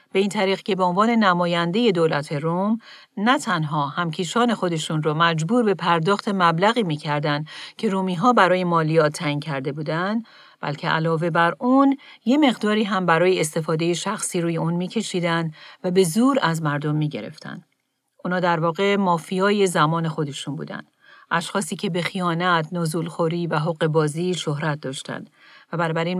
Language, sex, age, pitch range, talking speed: Persian, female, 40-59, 160-200 Hz, 150 wpm